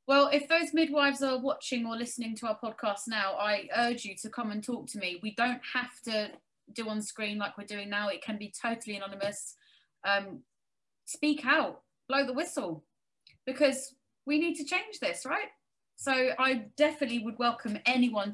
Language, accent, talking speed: English, British, 185 wpm